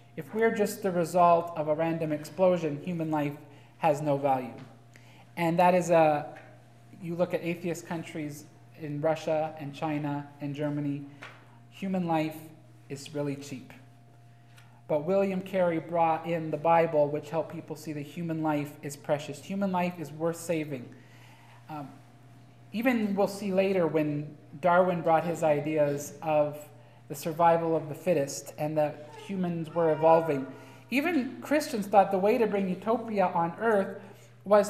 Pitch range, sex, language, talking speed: 145-185 Hz, male, English, 150 wpm